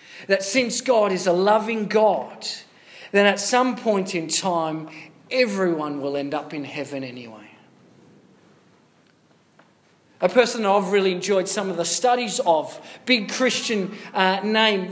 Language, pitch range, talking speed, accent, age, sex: English, 190-235 Hz, 135 wpm, Australian, 40-59, male